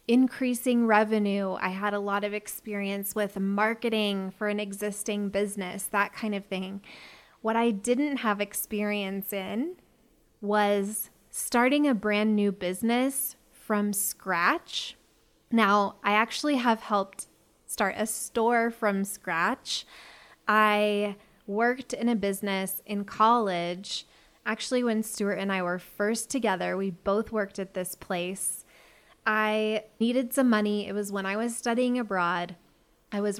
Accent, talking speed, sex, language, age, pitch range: American, 135 wpm, female, English, 20-39, 195-225 Hz